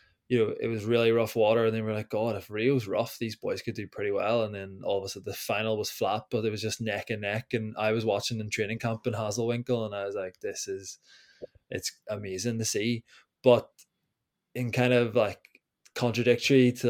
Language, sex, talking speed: English, male, 225 wpm